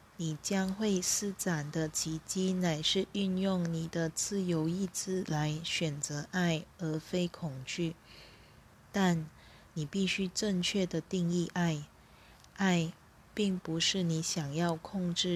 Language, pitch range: Chinese, 155-180 Hz